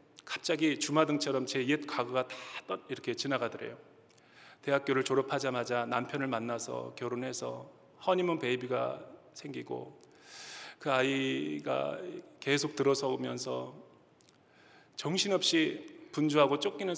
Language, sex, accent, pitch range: Korean, male, native, 120-155 Hz